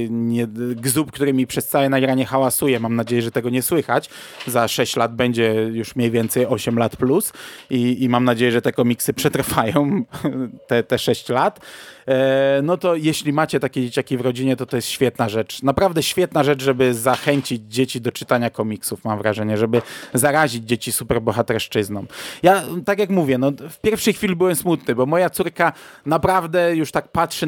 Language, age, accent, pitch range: Polish, 20-39, native, 120-150 Hz